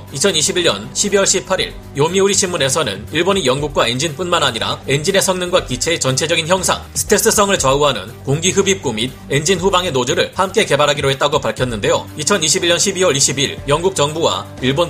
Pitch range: 135-190 Hz